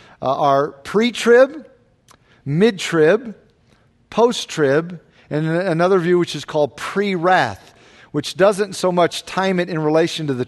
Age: 50-69